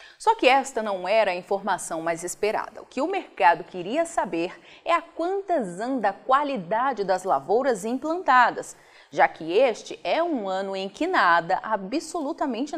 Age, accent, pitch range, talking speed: 30-49, Brazilian, 195-300 Hz, 160 wpm